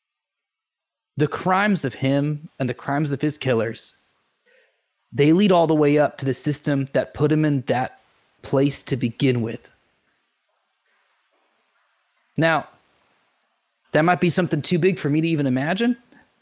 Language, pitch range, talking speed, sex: English, 135-180 Hz, 145 wpm, male